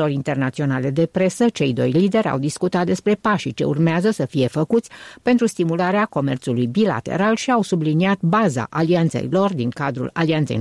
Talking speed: 160 wpm